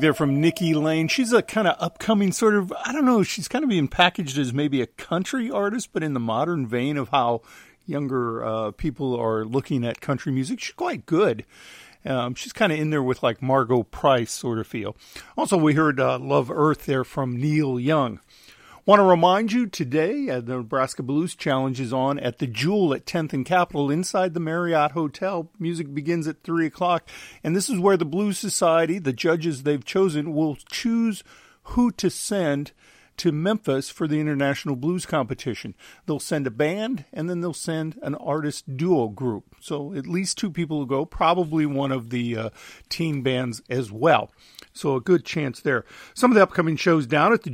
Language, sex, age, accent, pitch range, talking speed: English, male, 50-69, American, 135-170 Hz, 195 wpm